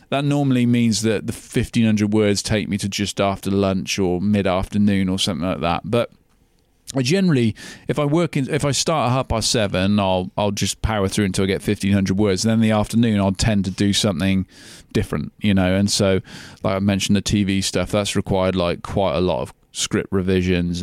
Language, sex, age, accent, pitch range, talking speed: English, male, 30-49, British, 95-115 Hz, 220 wpm